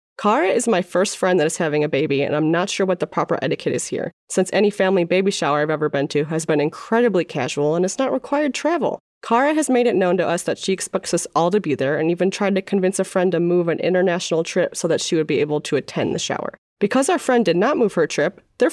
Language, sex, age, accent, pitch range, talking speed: English, female, 30-49, American, 160-225 Hz, 270 wpm